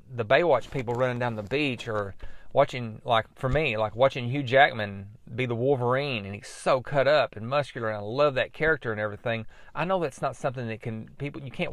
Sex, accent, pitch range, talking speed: male, American, 115-145 Hz, 220 wpm